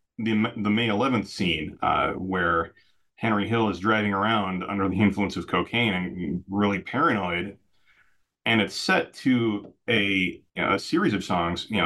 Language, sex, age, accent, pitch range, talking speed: English, male, 30-49, American, 95-115 Hz, 160 wpm